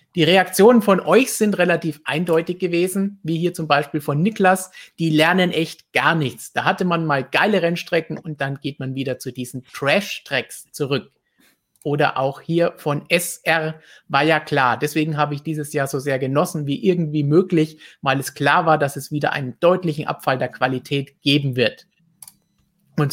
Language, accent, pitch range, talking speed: German, German, 140-170 Hz, 175 wpm